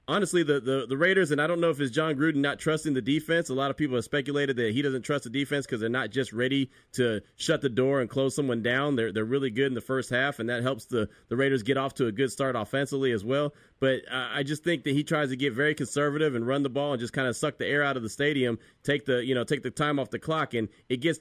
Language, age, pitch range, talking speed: English, 30-49, 130-155 Hz, 295 wpm